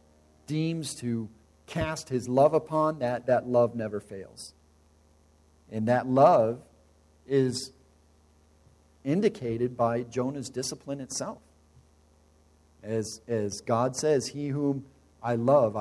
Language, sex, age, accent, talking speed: English, male, 50-69, American, 105 wpm